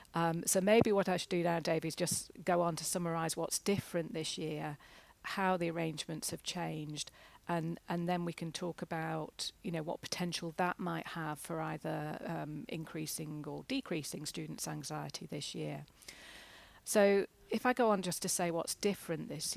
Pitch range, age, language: 155-180 Hz, 40-59, English